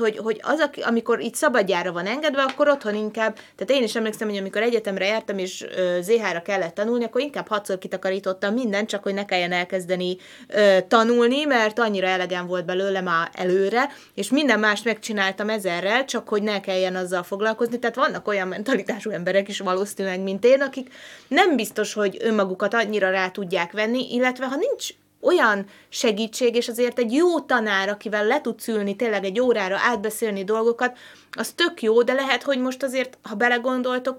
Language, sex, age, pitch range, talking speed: Hungarian, female, 20-39, 200-250 Hz, 175 wpm